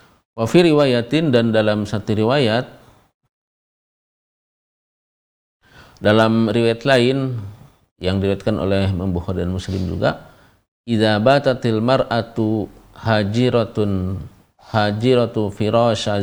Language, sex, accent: Indonesian, male, native